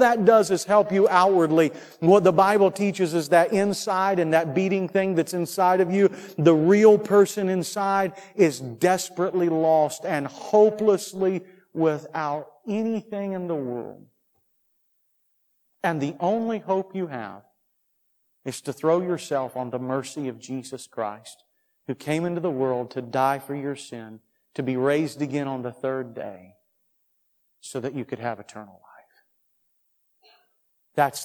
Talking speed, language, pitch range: 150 wpm, English, 130-180 Hz